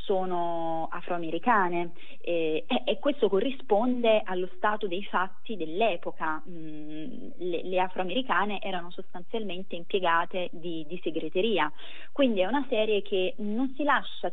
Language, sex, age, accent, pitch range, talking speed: Italian, female, 20-39, native, 180-220 Hz, 125 wpm